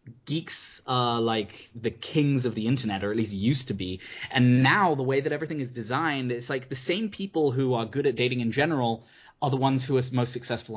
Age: 20-39